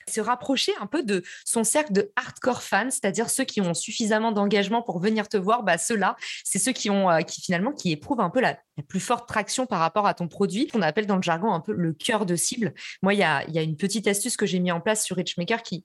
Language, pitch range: French, 195-245 Hz